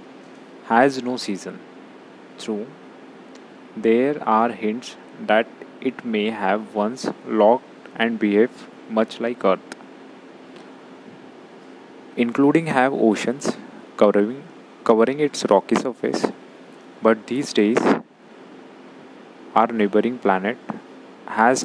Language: English